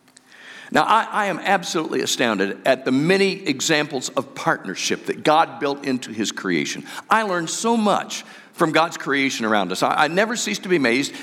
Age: 50-69